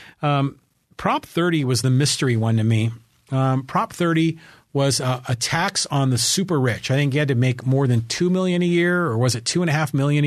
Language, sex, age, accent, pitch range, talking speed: English, male, 40-59, American, 125-170 Hz, 235 wpm